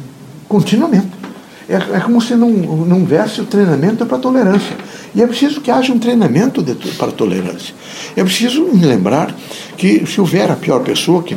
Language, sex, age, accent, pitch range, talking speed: Portuguese, male, 60-79, Brazilian, 155-210 Hz, 180 wpm